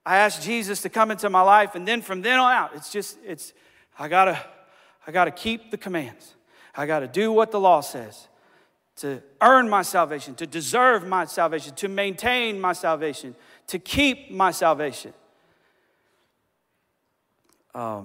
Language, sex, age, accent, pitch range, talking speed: English, male, 40-59, American, 150-190 Hz, 170 wpm